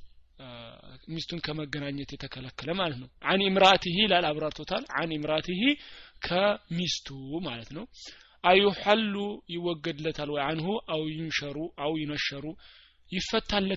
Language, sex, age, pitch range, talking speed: Amharic, male, 30-49, 145-195 Hz, 100 wpm